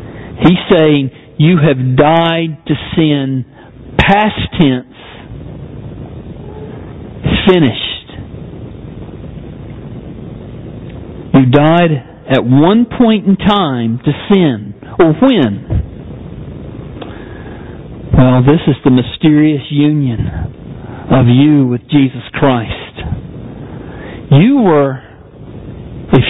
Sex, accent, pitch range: male, American, 125-165 Hz